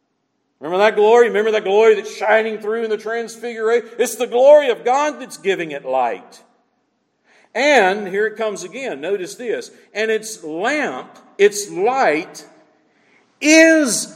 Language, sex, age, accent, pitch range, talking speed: English, male, 50-69, American, 210-265 Hz, 145 wpm